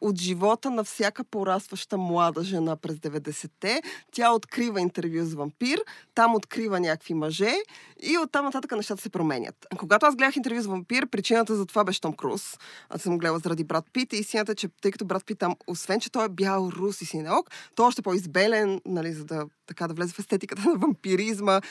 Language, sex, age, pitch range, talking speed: Bulgarian, female, 20-39, 180-220 Hz, 200 wpm